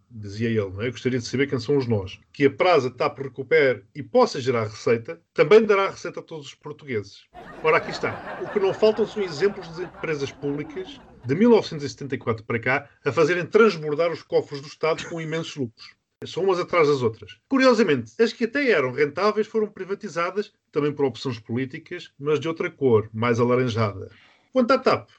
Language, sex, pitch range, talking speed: Portuguese, male, 130-190 Hz, 195 wpm